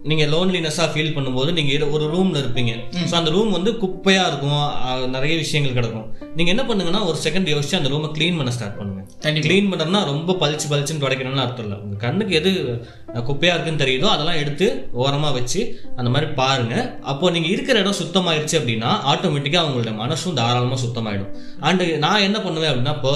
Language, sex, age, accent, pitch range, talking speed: Tamil, male, 20-39, native, 125-175 Hz, 175 wpm